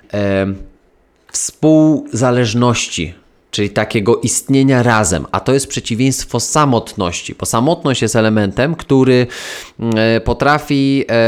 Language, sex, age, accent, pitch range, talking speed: Polish, male, 20-39, native, 100-120 Hz, 85 wpm